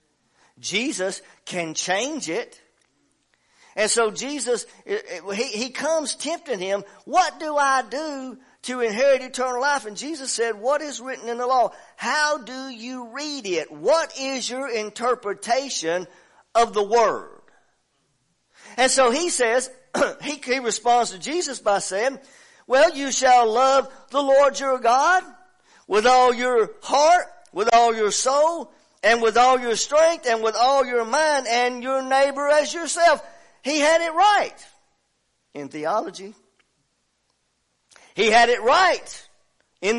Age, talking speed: 50-69, 140 wpm